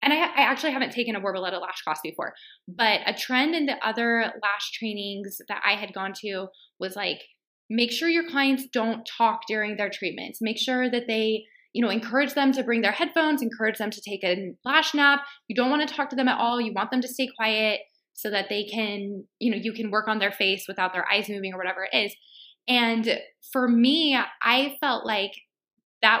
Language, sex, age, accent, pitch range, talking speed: English, female, 20-39, American, 205-270 Hz, 220 wpm